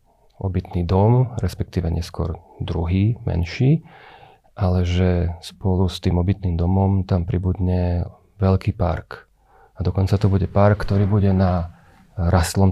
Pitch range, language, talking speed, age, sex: 85-100 Hz, Slovak, 125 wpm, 40-59, male